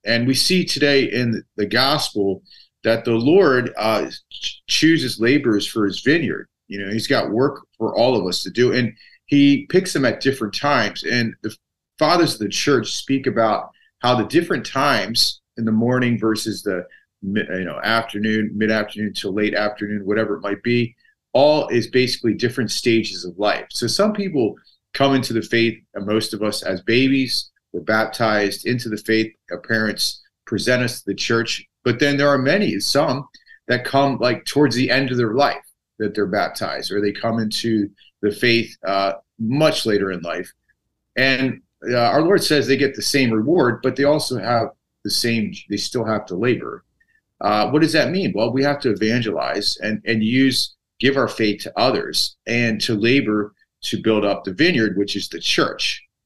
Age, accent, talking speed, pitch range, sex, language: 40-59, American, 190 wpm, 105-135 Hz, male, English